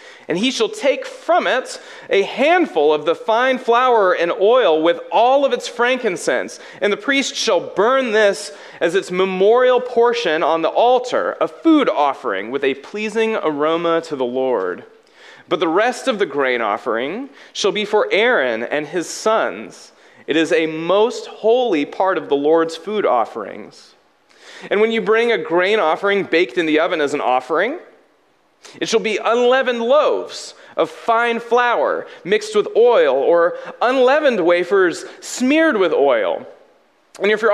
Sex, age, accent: male, 30-49, American